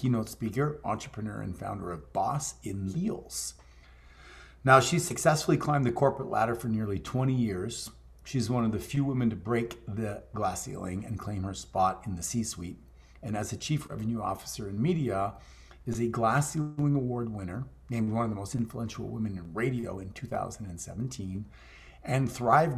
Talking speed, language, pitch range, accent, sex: 170 wpm, English, 95-125 Hz, American, male